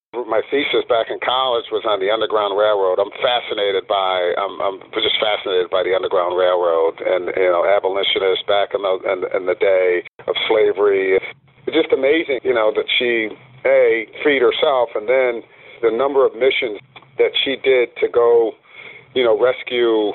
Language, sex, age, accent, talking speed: English, male, 50-69, American, 175 wpm